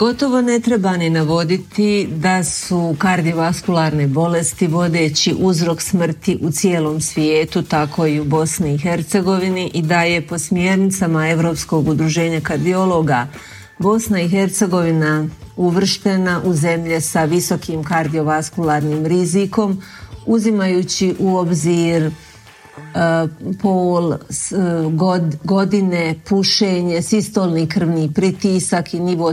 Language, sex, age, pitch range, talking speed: Croatian, female, 40-59, 160-190 Hz, 100 wpm